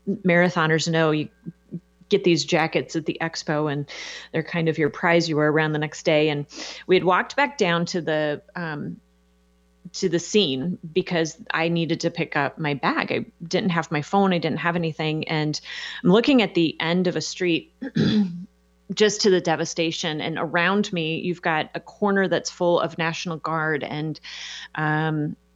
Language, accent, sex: English, American, female